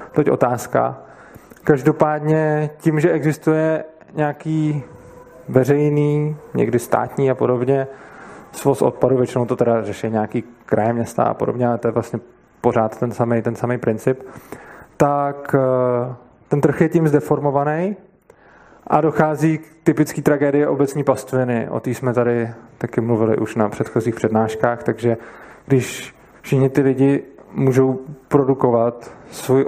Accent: native